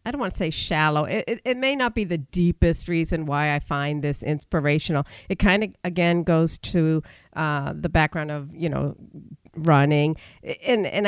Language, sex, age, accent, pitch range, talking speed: English, female, 50-69, American, 155-195 Hz, 190 wpm